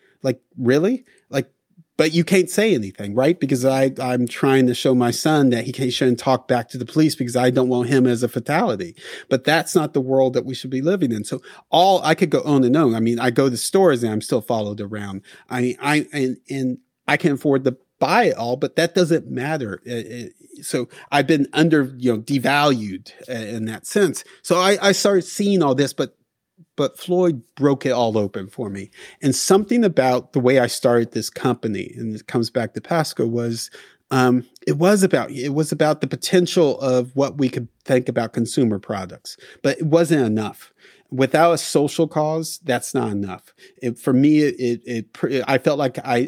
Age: 30-49